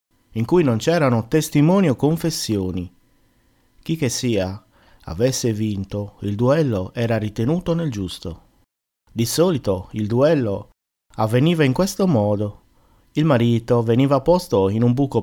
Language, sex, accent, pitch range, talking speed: Italian, male, native, 95-130 Hz, 130 wpm